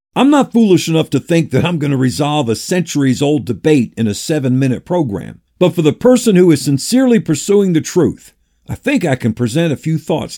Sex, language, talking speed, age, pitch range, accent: male, English, 210 wpm, 50-69, 135-185 Hz, American